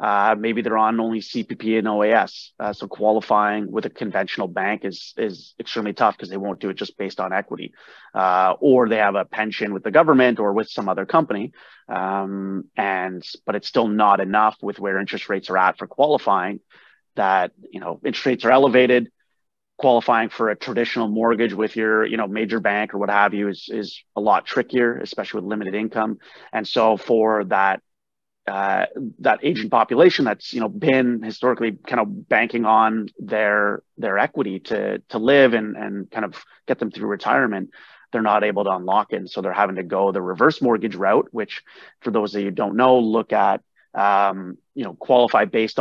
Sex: male